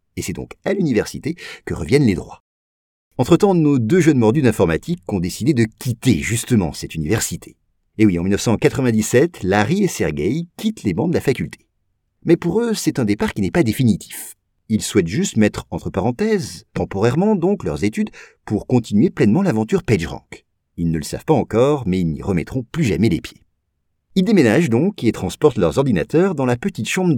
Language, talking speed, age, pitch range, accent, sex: French, 190 wpm, 50-69, 95-135 Hz, French, male